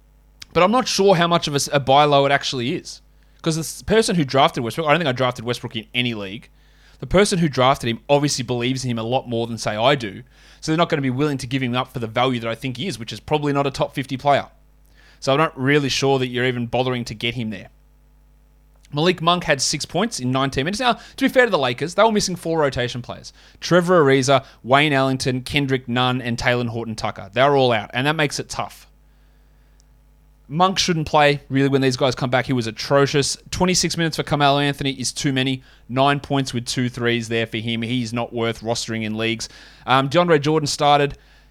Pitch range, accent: 125-150 Hz, Australian